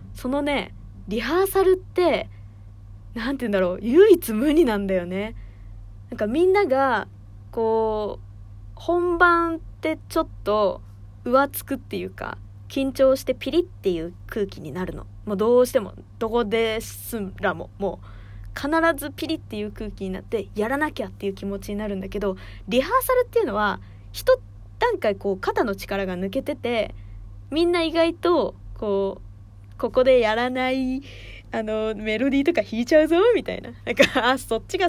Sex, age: female, 20-39